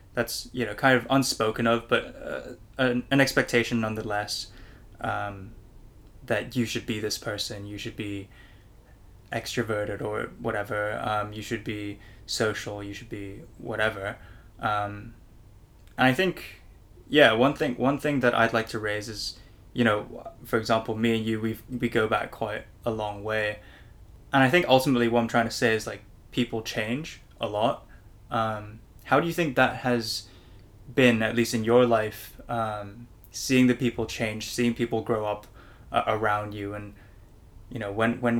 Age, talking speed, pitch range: 10-29, 170 wpm, 105-120 Hz